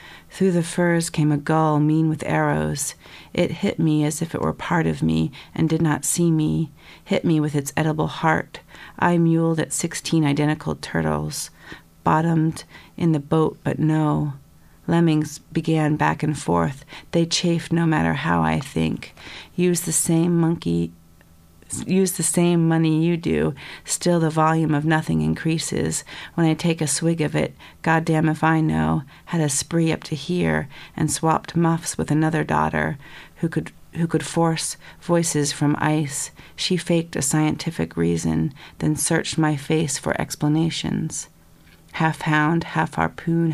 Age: 40-59